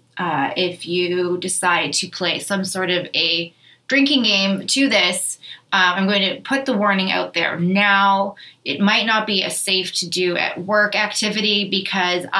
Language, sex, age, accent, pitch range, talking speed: English, female, 20-39, American, 175-200 Hz, 175 wpm